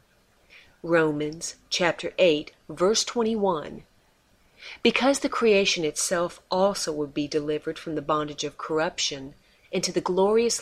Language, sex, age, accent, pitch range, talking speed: English, female, 40-59, American, 155-200 Hz, 120 wpm